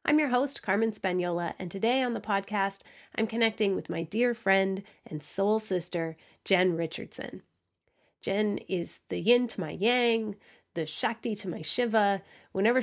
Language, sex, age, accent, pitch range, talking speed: English, female, 30-49, American, 175-230 Hz, 160 wpm